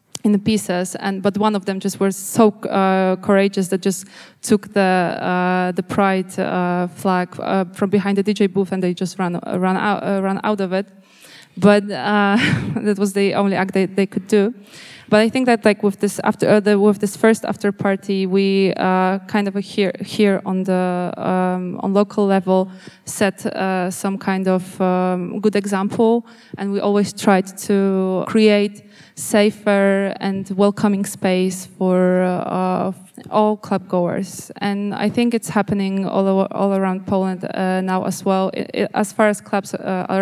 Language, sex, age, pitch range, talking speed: English, female, 20-39, 185-205 Hz, 185 wpm